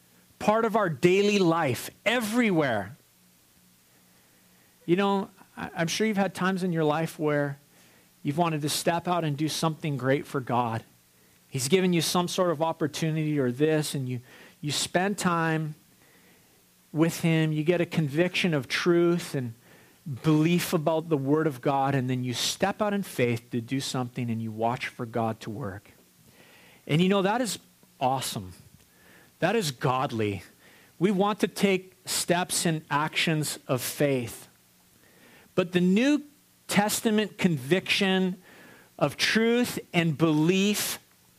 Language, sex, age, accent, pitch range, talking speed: English, male, 40-59, American, 140-195 Hz, 150 wpm